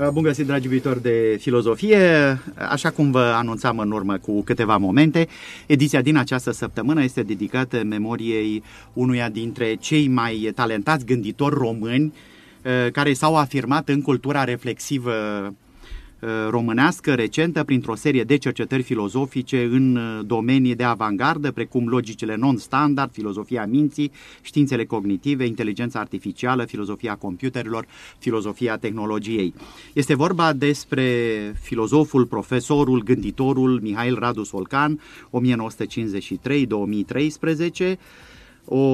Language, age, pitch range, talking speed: Romanian, 30-49, 115-140 Hz, 110 wpm